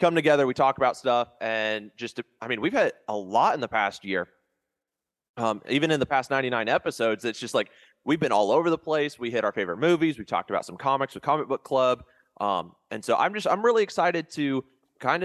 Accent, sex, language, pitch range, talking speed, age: American, male, English, 105-130 Hz, 230 wpm, 20-39